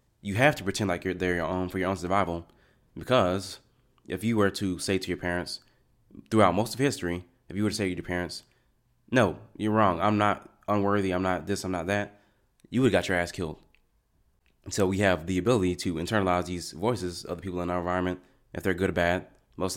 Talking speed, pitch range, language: 230 wpm, 90-105 Hz, English